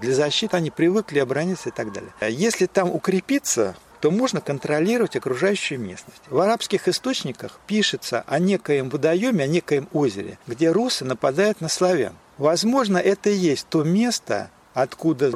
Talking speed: 150 wpm